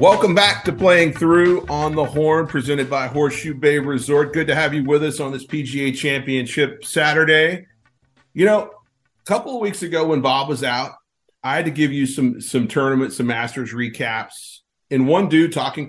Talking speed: 190 wpm